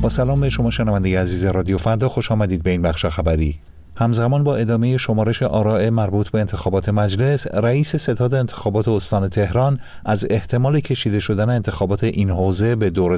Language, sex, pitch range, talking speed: Persian, male, 95-120 Hz, 170 wpm